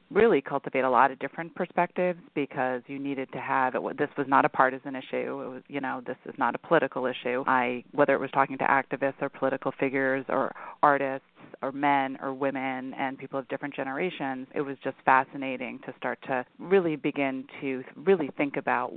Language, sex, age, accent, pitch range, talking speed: English, female, 30-49, American, 130-140 Hz, 195 wpm